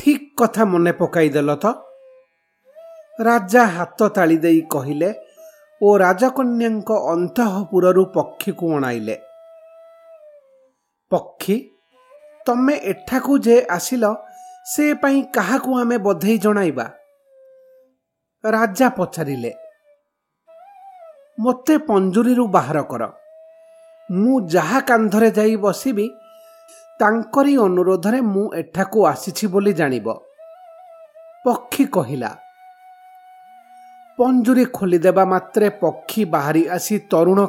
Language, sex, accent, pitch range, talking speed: English, male, Indian, 180-295 Hz, 85 wpm